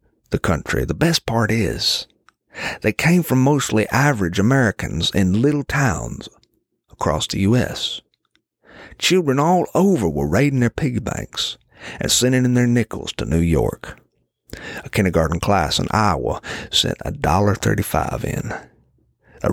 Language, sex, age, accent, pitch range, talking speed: English, male, 50-69, American, 85-125 Hz, 135 wpm